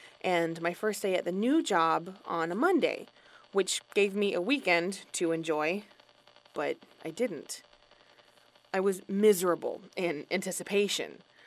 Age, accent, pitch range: 20-39, American, 175-215 Hz